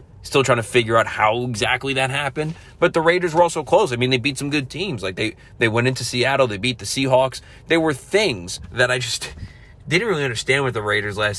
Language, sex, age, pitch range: English, male, 30-49, 115-140 Hz